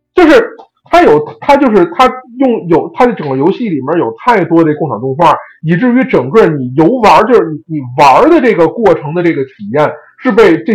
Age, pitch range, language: 50-69, 150-230 Hz, Chinese